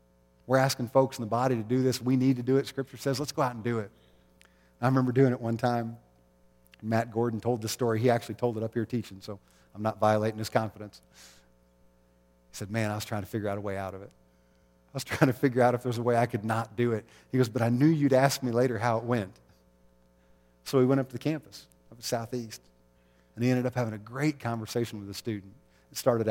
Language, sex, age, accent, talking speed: English, male, 40-59, American, 255 wpm